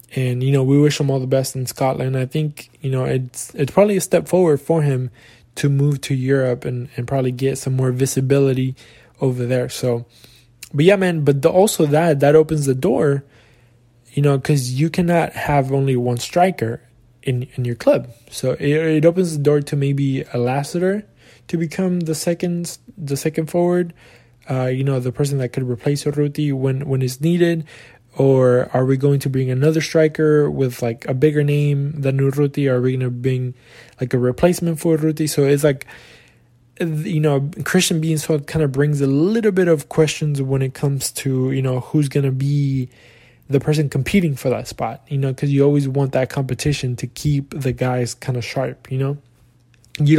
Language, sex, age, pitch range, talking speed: English, male, 20-39, 125-150 Hz, 200 wpm